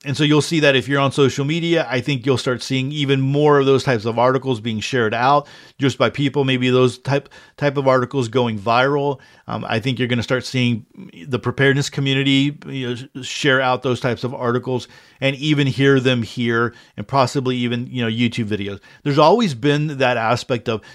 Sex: male